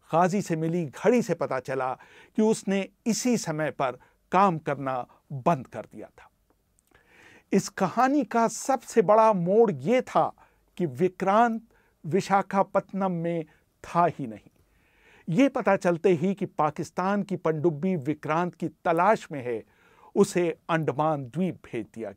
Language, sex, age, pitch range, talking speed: Hindi, male, 50-69, 165-215 Hz, 125 wpm